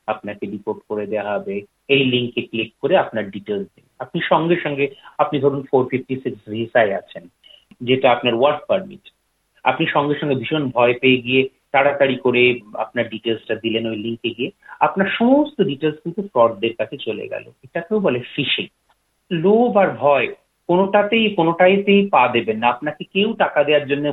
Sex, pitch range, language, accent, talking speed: male, 120-180 Hz, Bengali, native, 95 wpm